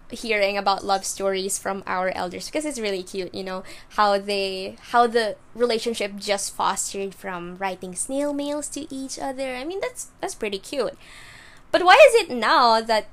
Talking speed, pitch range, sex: 180 wpm, 195-285 Hz, female